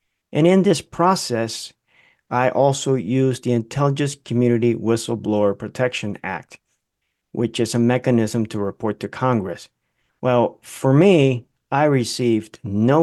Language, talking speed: English, 125 wpm